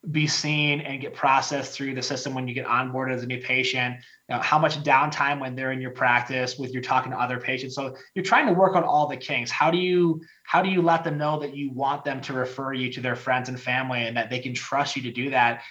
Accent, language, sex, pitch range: American, English, male, 130-155 Hz